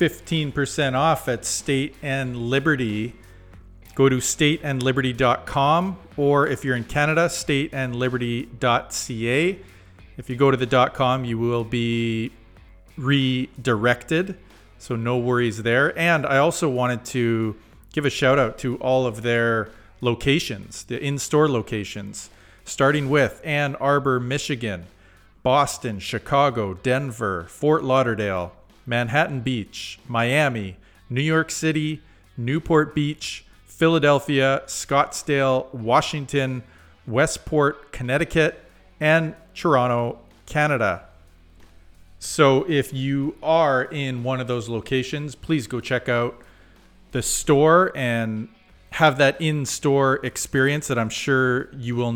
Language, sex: English, male